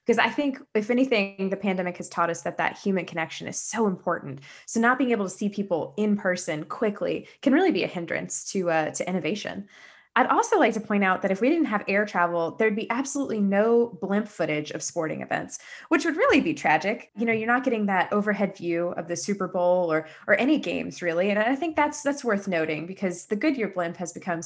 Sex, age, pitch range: female, 20-39, 175-235 Hz